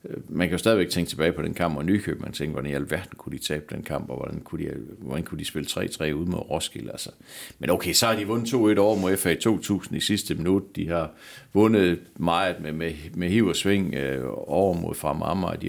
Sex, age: male, 60-79